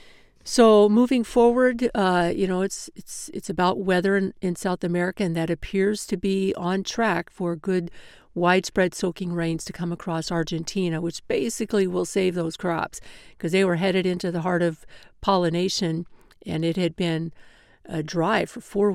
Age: 50-69